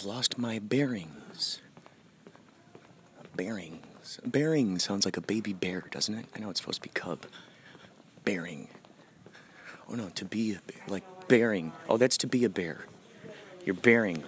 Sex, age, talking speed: male, 30-49, 150 wpm